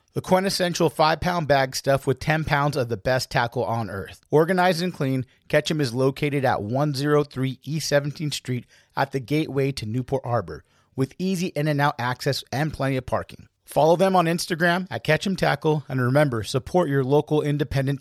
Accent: American